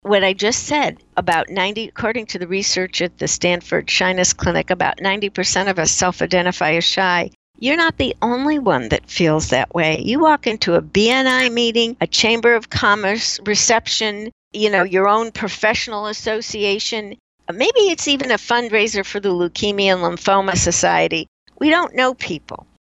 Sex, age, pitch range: female, 60-79, 180-230 Hz